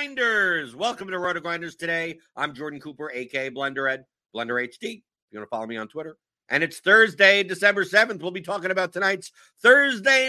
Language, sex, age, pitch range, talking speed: English, male, 50-69, 130-185 Hz, 200 wpm